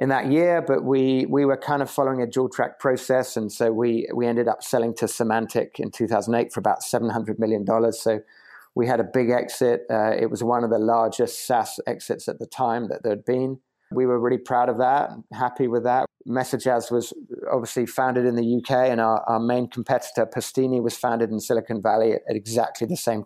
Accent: British